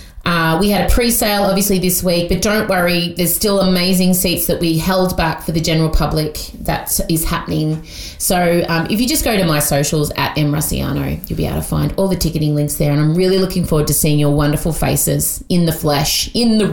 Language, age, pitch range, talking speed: English, 30-49, 165-260 Hz, 220 wpm